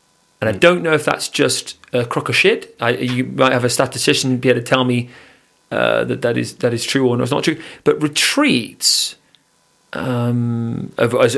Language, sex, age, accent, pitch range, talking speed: English, male, 40-59, British, 125-195 Hz, 195 wpm